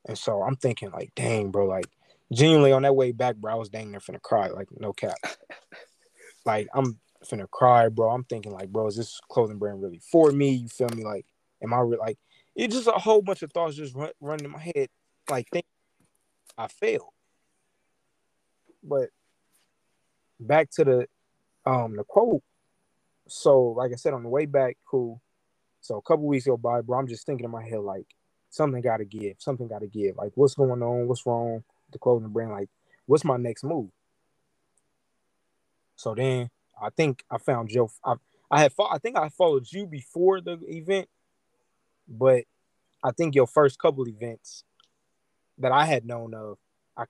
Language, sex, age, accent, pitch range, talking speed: English, male, 20-39, American, 110-145 Hz, 190 wpm